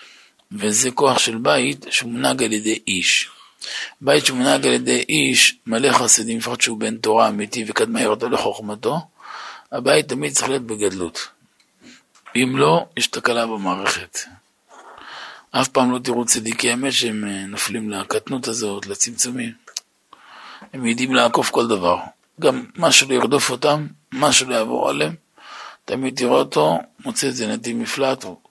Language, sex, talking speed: Hebrew, male, 135 wpm